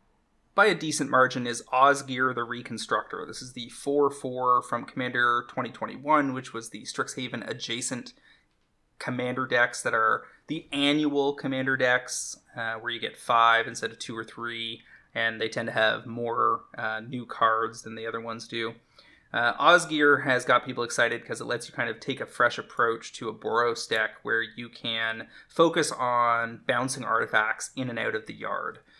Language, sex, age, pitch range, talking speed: English, male, 20-39, 115-130 Hz, 175 wpm